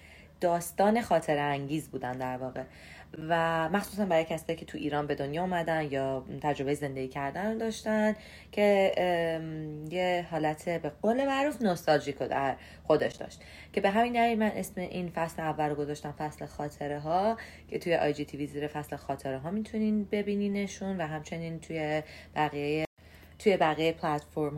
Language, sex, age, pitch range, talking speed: Persian, female, 30-49, 140-195 Hz, 150 wpm